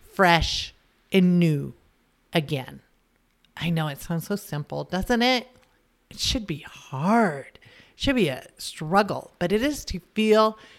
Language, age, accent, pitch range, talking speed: English, 40-59, American, 165-210 Hz, 145 wpm